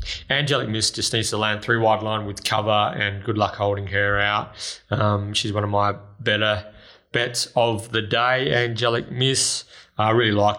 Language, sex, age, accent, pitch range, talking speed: English, male, 20-39, Australian, 105-115 Hz, 185 wpm